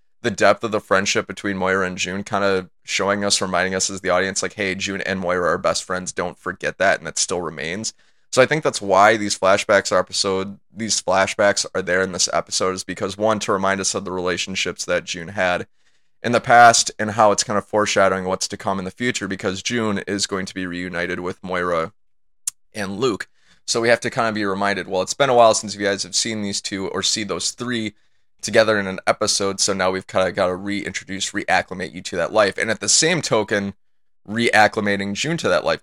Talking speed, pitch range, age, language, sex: 225 wpm, 95-110 Hz, 20-39, English, male